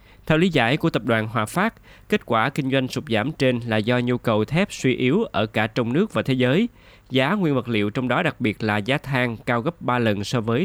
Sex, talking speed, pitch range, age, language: male, 260 wpm, 105-135 Hz, 20-39, Vietnamese